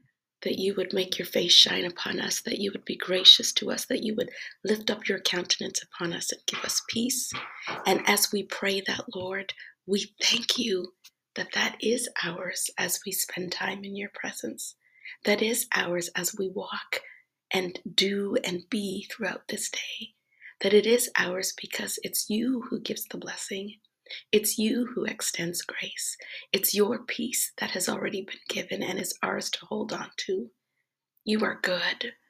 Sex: female